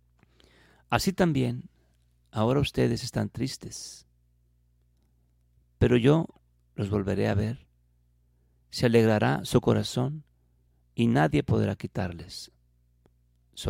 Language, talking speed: Spanish, 90 wpm